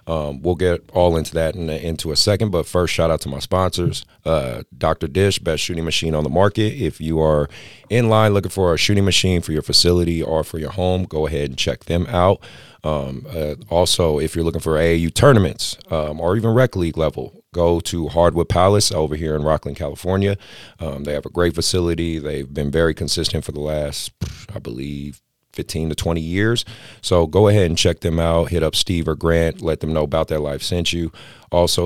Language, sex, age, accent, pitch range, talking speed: English, male, 30-49, American, 80-95 Hz, 215 wpm